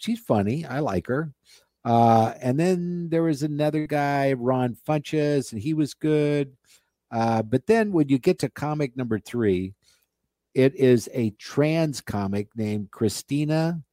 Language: English